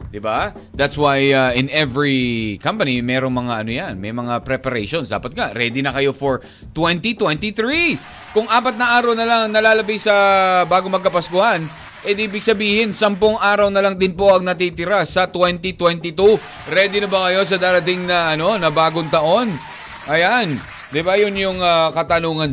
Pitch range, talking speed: 140-205 Hz, 170 wpm